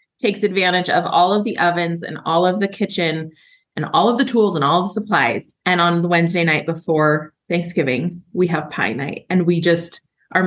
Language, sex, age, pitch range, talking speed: English, female, 20-39, 165-205 Hz, 210 wpm